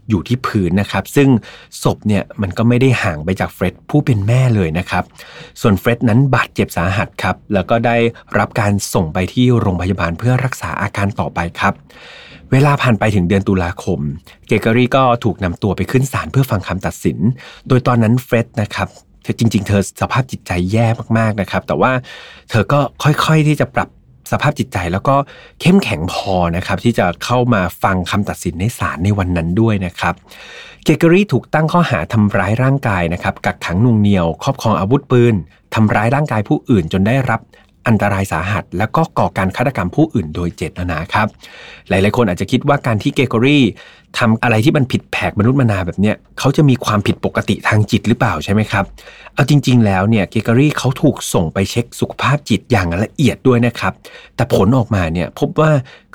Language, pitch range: Thai, 100-130 Hz